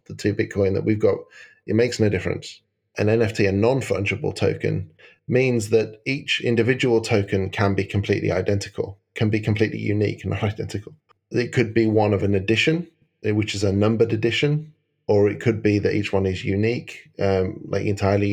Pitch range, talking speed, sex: 100-120 Hz, 180 wpm, male